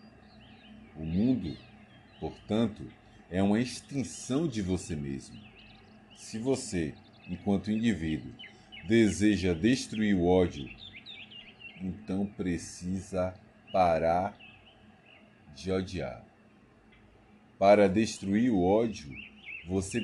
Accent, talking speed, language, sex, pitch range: Brazilian, 80 wpm, Portuguese, male, 95-110 Hz